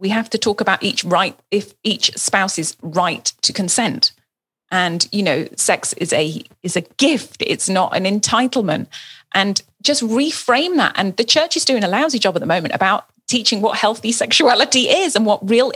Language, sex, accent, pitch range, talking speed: English, female, British, 195-255 Hz, 190 wpm